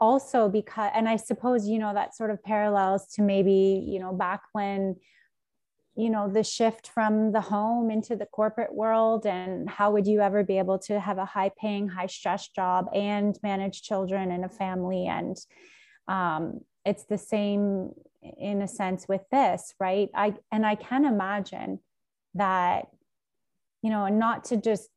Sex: female